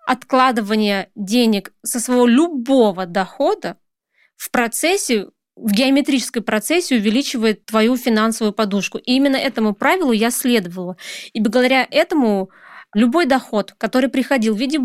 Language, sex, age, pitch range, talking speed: Russian, female, 20-39, 220-270 Hz, 120 wpm